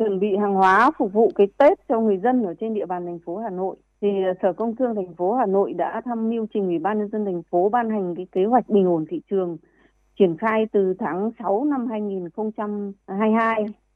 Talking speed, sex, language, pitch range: 230 wpm, female, Vietnamese, 190-230 Hz